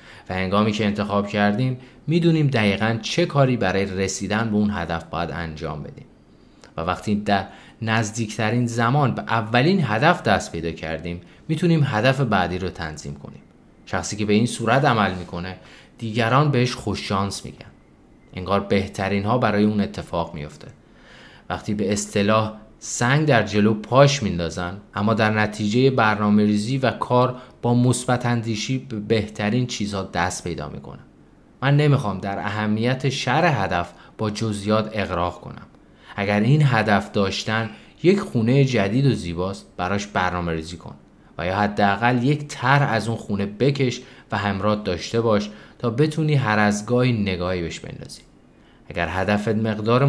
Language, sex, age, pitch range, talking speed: Persian, male, 30-49, 95-125 Hz, 145 wpm